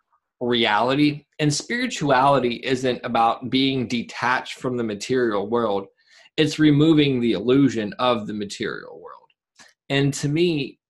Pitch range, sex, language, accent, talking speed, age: 120-160 Hz, male, English, American, 120 wpm, 20-39